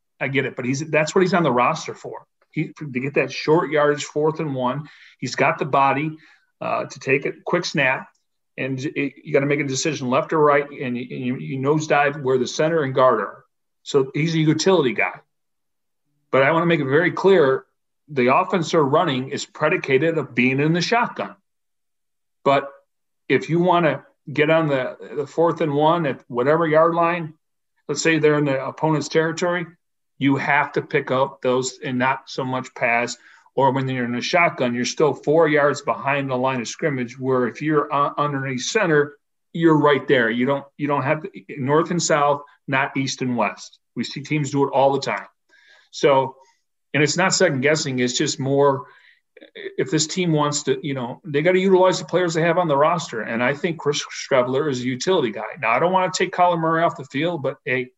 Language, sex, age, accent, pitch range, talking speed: English, male, 40-59, American, 135-165 Hz, 210 wpm